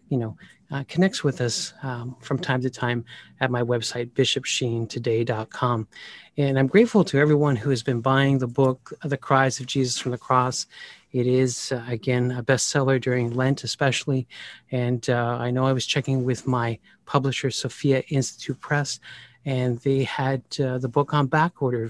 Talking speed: 175 wpm